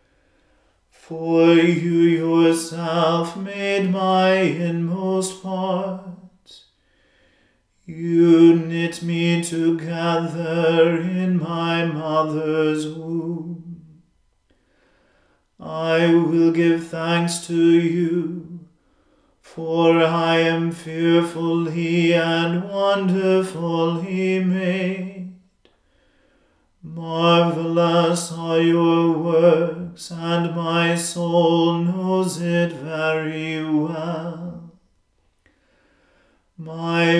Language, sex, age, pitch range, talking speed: English, male, 40-59, 165-170 Hz, 65 wpm